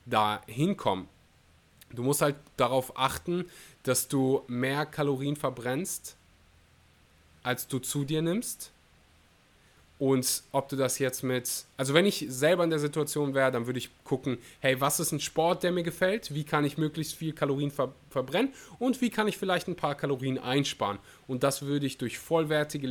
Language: German